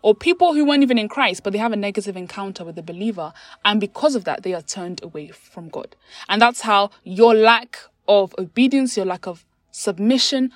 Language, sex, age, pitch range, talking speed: English, female, 20-39, 180-230 Hz, 210 wpm